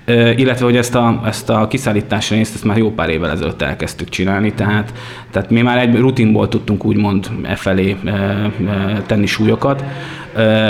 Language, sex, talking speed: Hungarian, male, 170 wpm